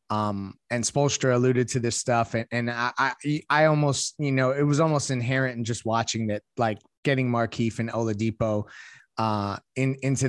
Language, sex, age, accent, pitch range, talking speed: English, male, 30-49, American, 115-140 Hz, 180 wpm